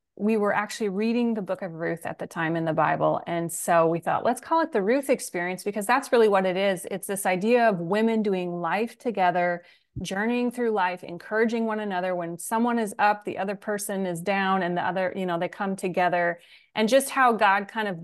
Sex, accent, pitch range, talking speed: female, American, 180-225 Hz, 225 wpm